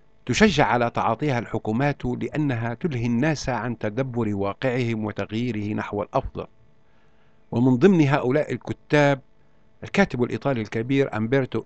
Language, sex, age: Arabic, male, 60-79